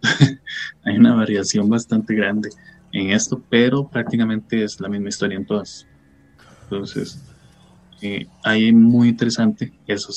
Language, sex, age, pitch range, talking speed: Spanish, male, 20-39, 100-140 Hz, 130 wpm